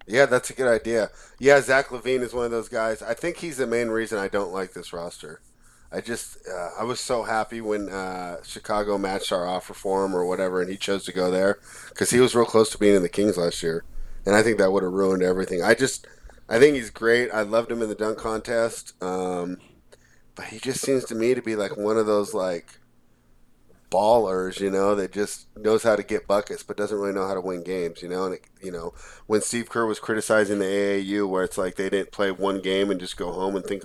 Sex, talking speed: male, 245 wpm